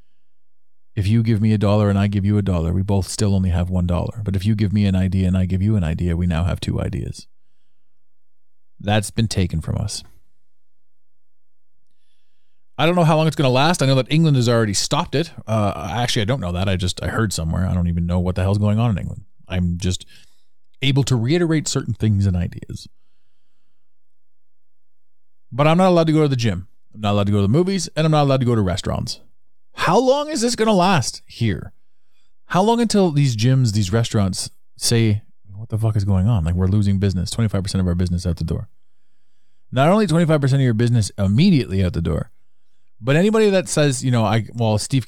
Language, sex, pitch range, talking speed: English, male, 95-130 Hz, 220 wpm